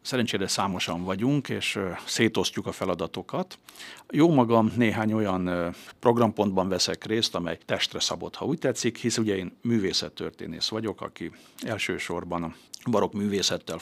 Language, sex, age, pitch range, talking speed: Hungarian, male, 60-79, 100-120 Hz, 140 wpm